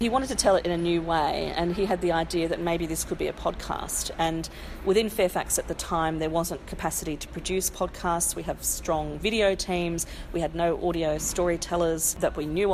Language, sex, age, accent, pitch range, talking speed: English, female, 40-59, Australian, 155-180 Hz, 215 wpm